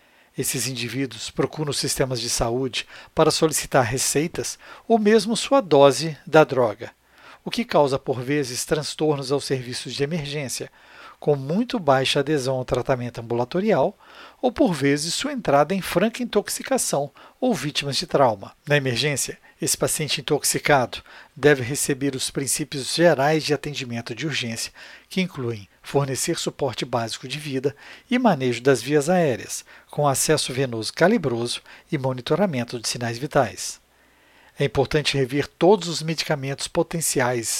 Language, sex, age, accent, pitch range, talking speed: Portuguese, male, 60-79, Brazilian, 130-170 Hz, 135 wpm